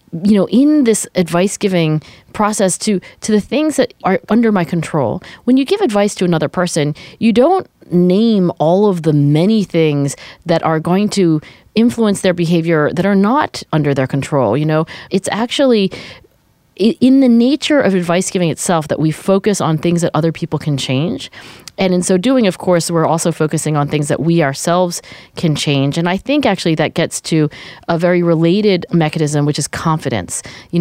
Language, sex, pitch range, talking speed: English, female, 155-200 Hz, 185 wpm